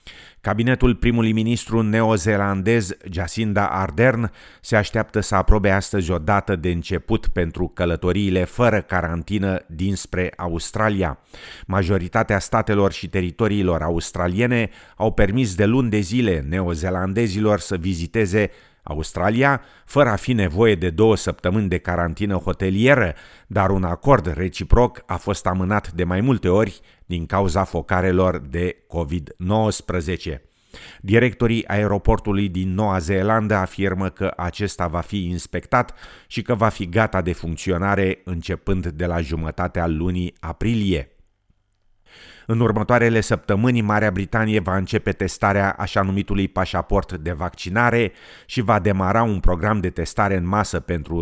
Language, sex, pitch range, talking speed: Romanian, male, 90-110 Hz, 125 wpm